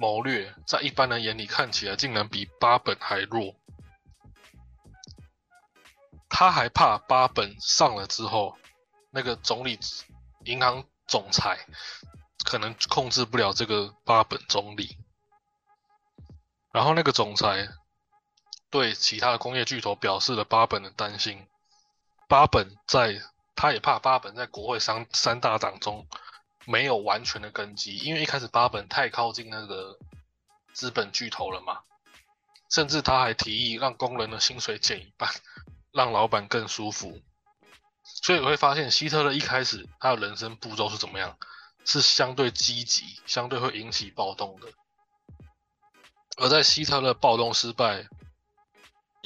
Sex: male